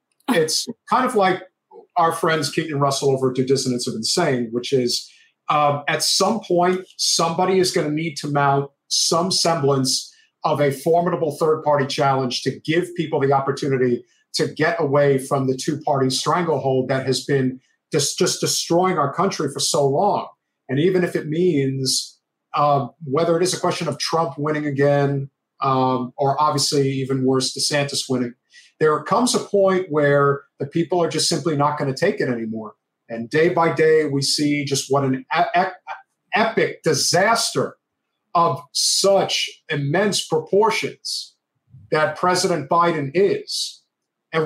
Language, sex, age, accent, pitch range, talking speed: English, male, 50-69, American, 140-180 Hz, 160 wpm